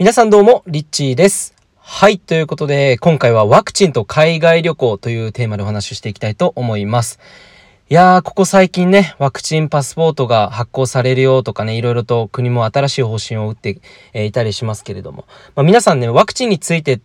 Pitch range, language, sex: 115-180 Hz, Japanese, male